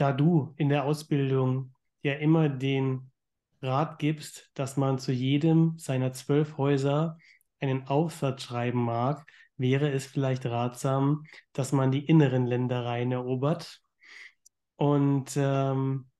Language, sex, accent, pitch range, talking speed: German, male, German, 130-155 Hz, 120 wpm